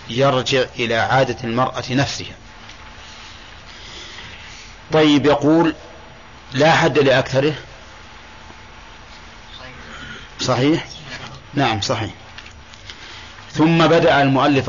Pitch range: 115-140 Hz